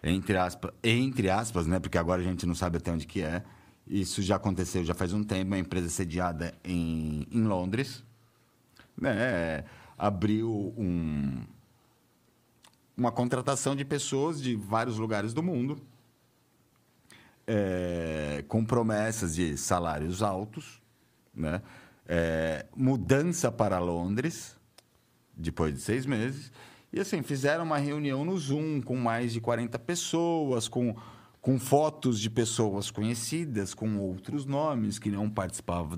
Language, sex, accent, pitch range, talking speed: Portuguese, male, Brazilian, 95-130 Hz, 125 wpm